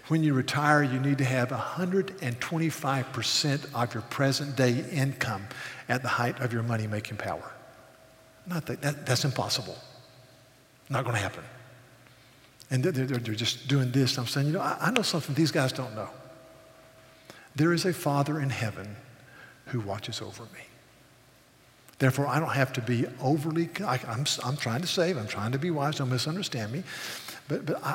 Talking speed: 170 wpm